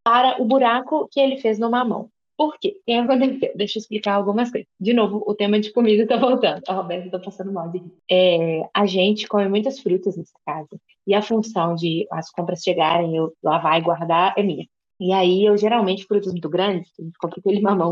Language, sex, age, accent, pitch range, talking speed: Portuguese, female, 20-39, Brazilian, 200-265 Hz, 210 wpm